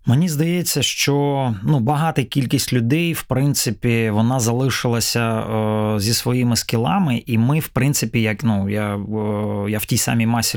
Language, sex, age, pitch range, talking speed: Ukrainian, male, 20-39, 115-135 Hz, 140 wpm